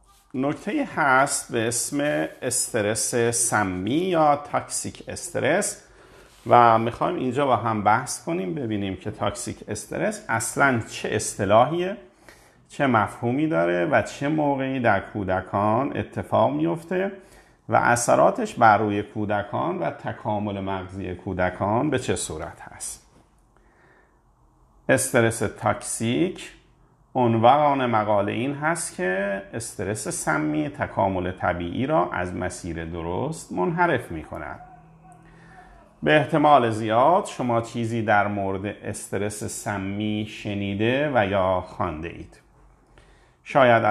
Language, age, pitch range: Persian, 50-69, 95-140 Hz